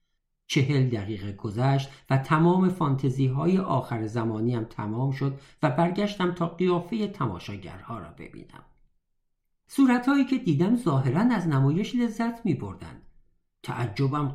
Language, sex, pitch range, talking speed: Persian, male, 120-180 Hz, 110 wpm